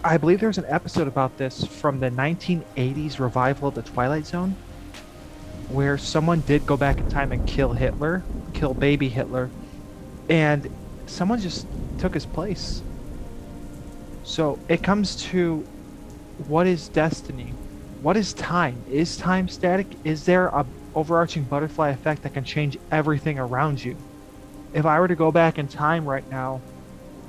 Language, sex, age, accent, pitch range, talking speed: English, male, 20-39, American, 125-155 Hz, 150 wpm